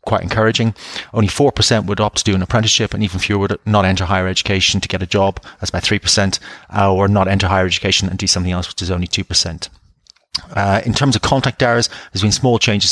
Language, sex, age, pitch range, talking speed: English, male, 30-49, 95-105 Hz, 230 wpm